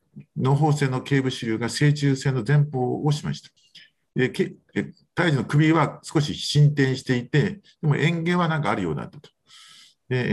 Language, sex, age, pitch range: Japanese, male, 50-69, 110-150 Hz